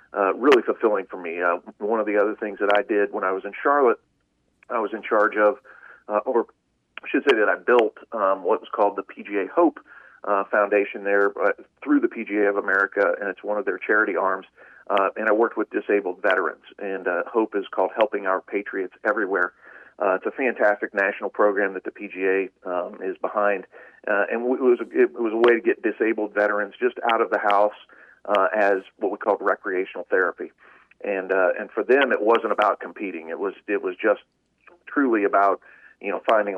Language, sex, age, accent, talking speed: English, male, 40-59, American, 210 wpm